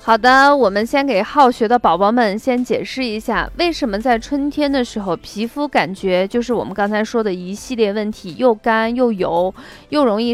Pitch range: 210-285 Hz